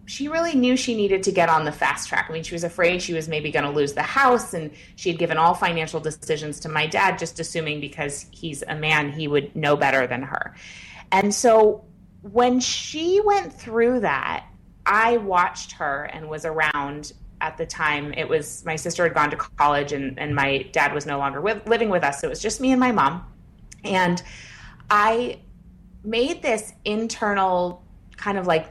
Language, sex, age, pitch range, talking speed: English, female, 30-49, 145-185 Hz, 200 wpm